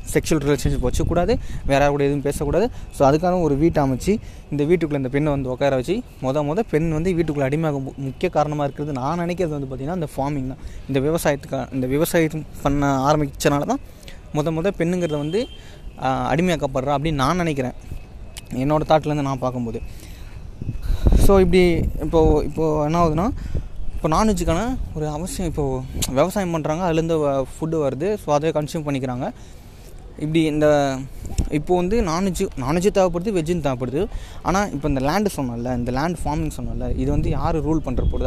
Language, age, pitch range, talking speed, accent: Tamil, 20-39, 130-160 Hz, 155 wpm, native